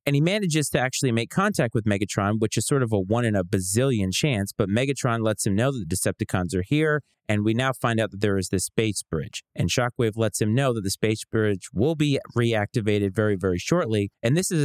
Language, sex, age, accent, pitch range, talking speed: English, male, 30-49, American, 105-130 Hz, 240 wpm